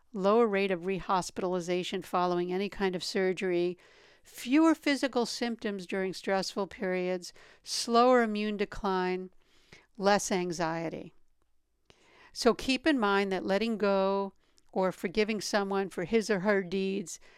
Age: 60-79